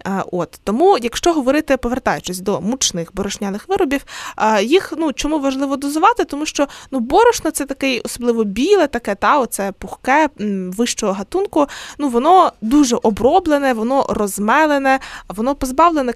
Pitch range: 220-290 Hz